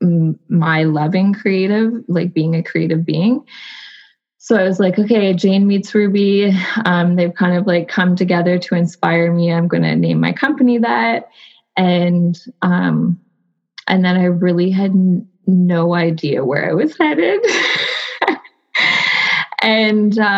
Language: English